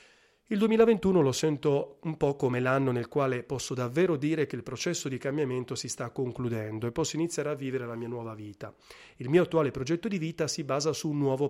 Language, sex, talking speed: Italian, male, 215 wpm